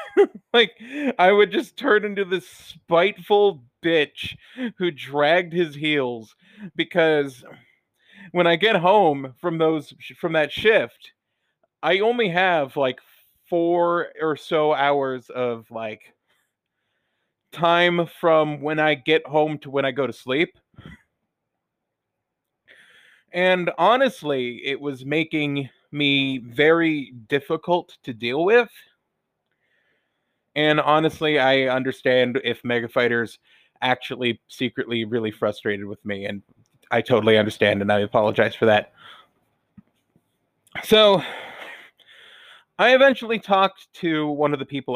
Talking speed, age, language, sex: 115 wpm, 30-49, English, male